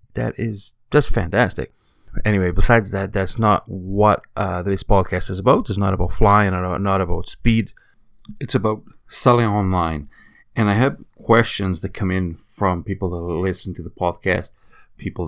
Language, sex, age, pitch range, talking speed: English, male, 30-49, 90-110 Hz, 165 wpm